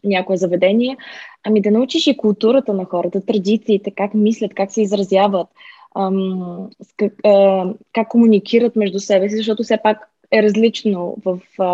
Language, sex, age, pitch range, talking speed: Bulgarian, female, 20-39, 205-235 Hz, 155 wpm